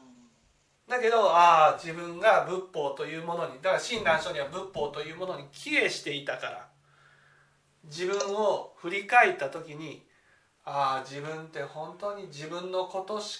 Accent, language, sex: native, Japanese, male